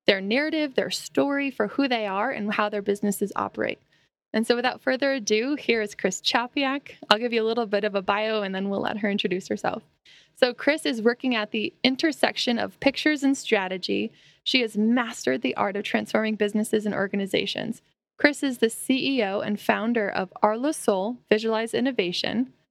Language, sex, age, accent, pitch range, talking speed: English, female, 10-29, American, 205-255 Hz, 185 wpm